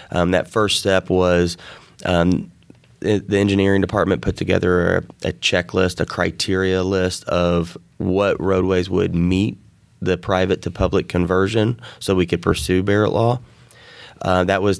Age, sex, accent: 20-39, male, American